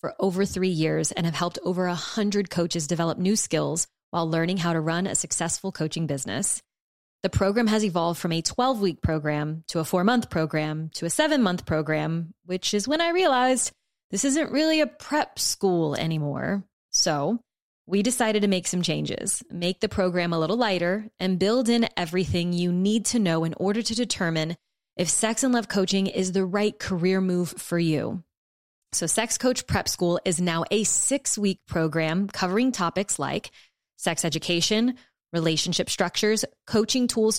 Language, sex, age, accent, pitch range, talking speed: English, female, 20-39, American, 170-215 Hz, 180 wpm